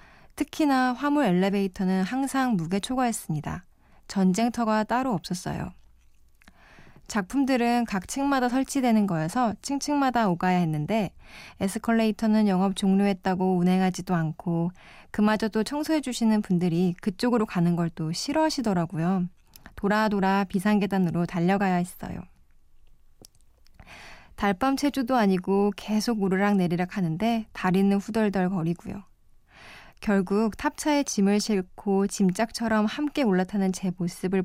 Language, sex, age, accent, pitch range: Korean, female, 20-39, native, 180-230 Hz